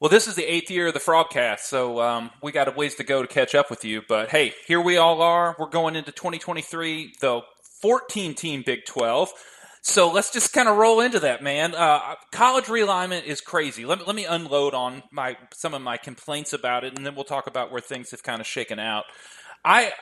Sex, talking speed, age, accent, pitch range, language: male, 235 wpm, 30-49, American, 130-170 Hz, English